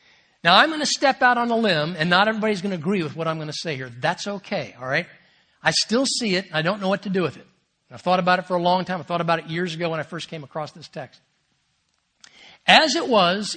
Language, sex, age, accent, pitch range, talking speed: English, male, 60-79, American, 175-240 Hz, 280 wpm